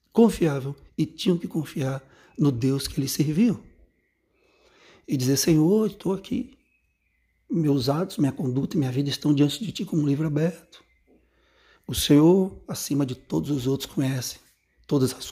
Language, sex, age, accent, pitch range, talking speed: Portuguese, male, 60-79, Brazilian, 140-170 Hz, 155 wpm